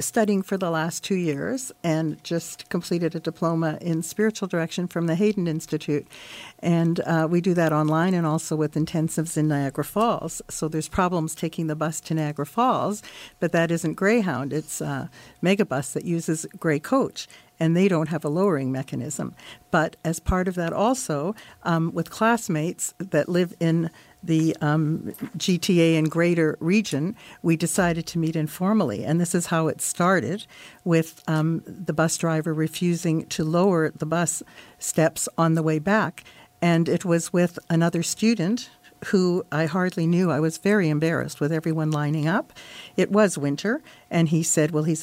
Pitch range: 155-180 Hz